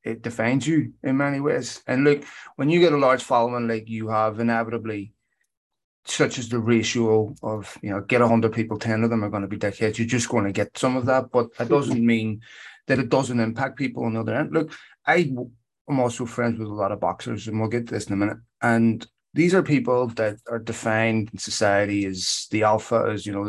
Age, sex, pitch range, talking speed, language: 30-49, male, 115-130 Hz, 225 wpm, English